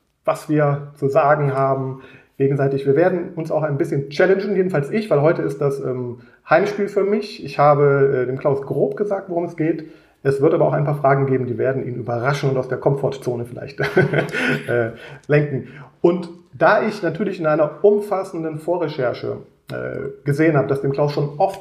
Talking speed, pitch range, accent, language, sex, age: 190 wpm, 135-175 Hz, German, German, male, 30-49